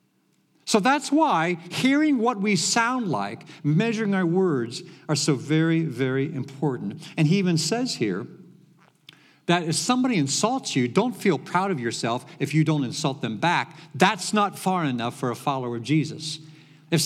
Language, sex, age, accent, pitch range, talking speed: English, male, 50-69, American, 130-170 Hz, 165 wpm